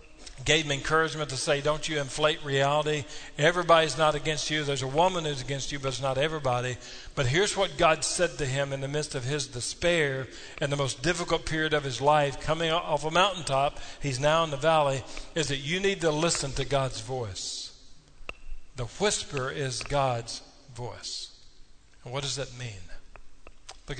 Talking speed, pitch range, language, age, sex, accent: 185 wpm, 130-155 Hz, English, 50-69, male, American